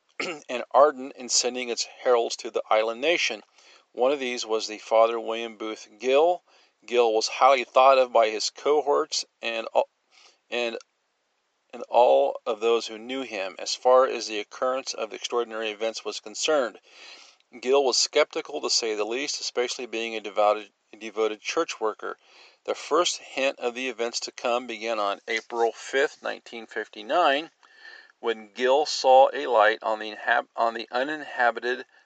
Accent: American